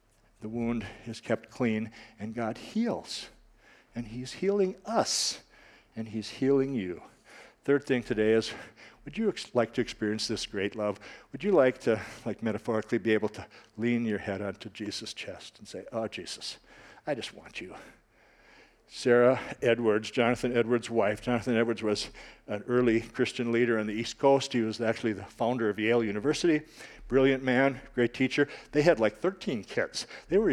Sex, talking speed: male, 170 wpm